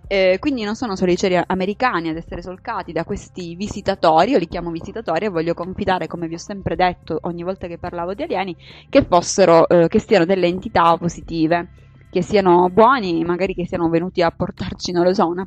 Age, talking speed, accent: 20-39, 205 wpm, native